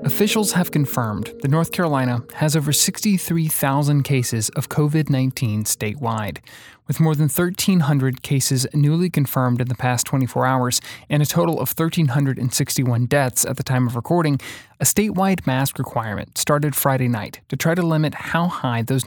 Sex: male